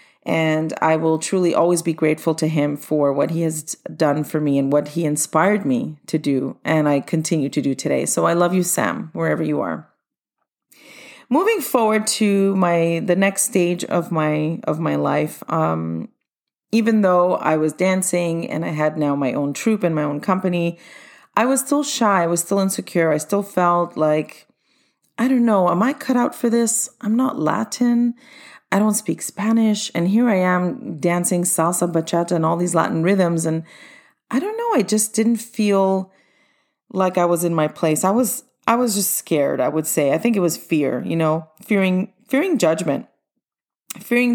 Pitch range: 160-220 Hz